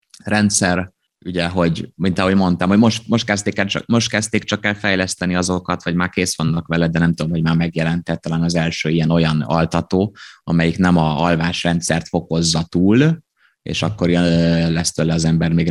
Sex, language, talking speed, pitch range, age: male, Hungarian, 175 wpm, 80-95 Hz, 20-39